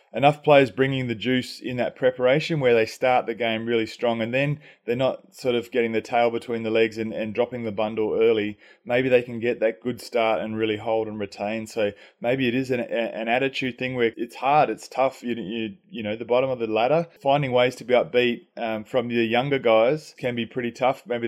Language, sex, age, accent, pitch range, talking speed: English, male, 20-39, Australian, 115-140 Hz, 230 wpm